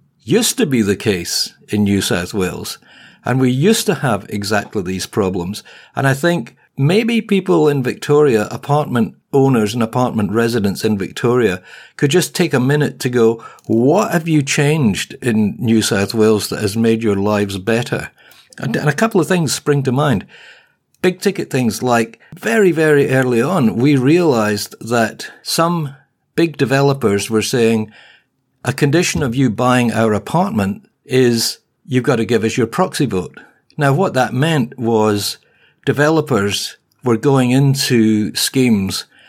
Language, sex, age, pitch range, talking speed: English, male, 50-69, 110-145 Hz, 155 wpm